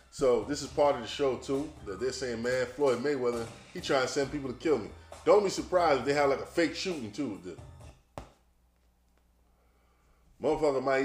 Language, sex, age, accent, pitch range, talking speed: English, male, 20-39, American, 85-135 Hz, 185 wpm